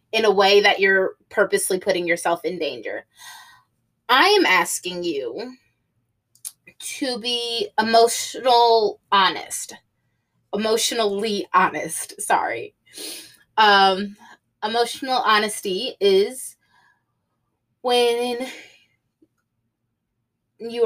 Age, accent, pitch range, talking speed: 20-39, American, 185-230 Hz, 80 wpm